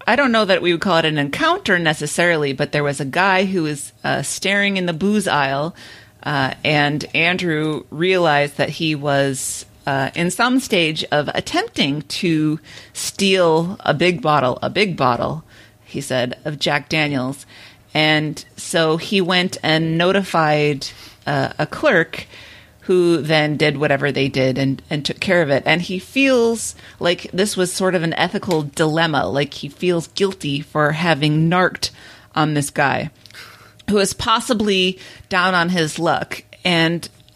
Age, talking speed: 30-49, 160 wpm